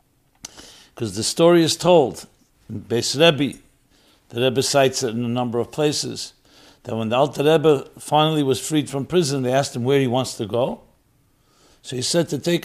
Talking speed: 185 wpm